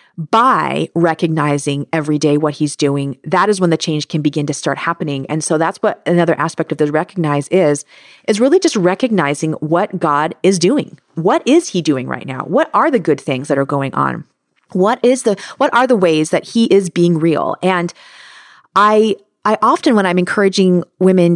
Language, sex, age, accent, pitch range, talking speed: English, female, 30-49, American, 165-235 Hz, 195 wpm